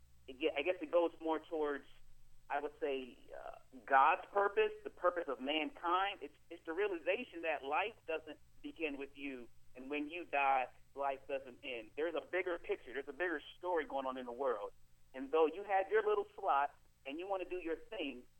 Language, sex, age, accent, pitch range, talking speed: English, male, 40-59, American, 130-180 Hz, 195 wpm